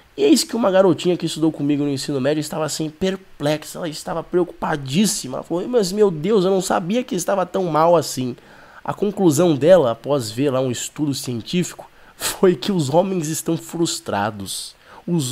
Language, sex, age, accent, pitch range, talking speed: Portuguese, male, 20-39, Brazilian, 120-175 Hz, 180 wpm